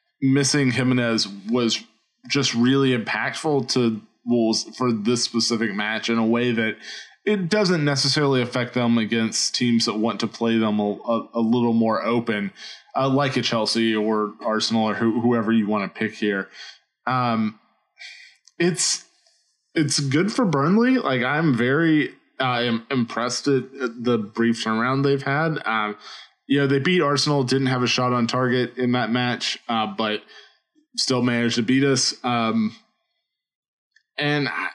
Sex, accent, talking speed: male, American, 155 wpm